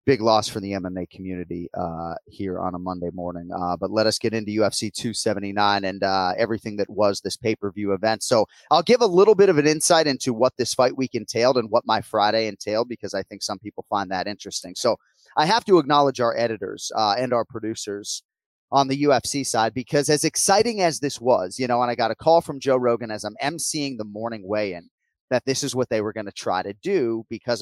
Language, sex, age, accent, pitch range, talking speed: English, male, 30-49, American, 105-145 Hz, 230 wpm